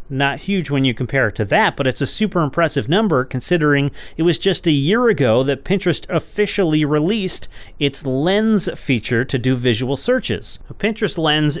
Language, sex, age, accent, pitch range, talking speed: English, male, 40-59, American, 120-170 Hz, 180 wpm